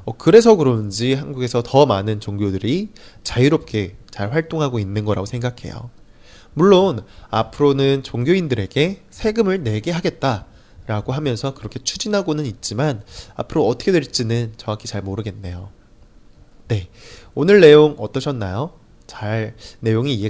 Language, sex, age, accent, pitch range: Chinese, male, 20-39, Korean, 105-145 Hz